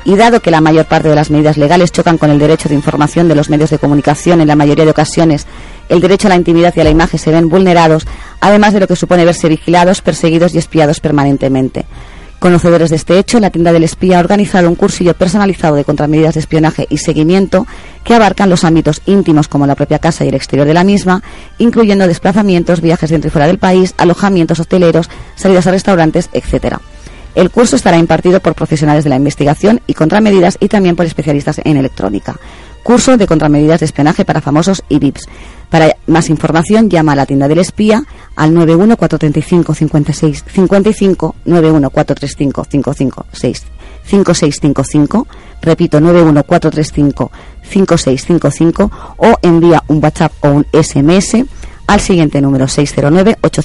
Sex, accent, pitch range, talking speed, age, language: female, Spanish, 150-185 Hz, 165 wpm, 30-49, Spanish